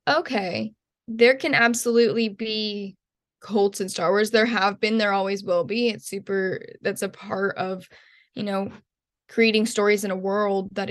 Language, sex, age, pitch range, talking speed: English, female, 10-29, 200-230 Hz, 165 wpm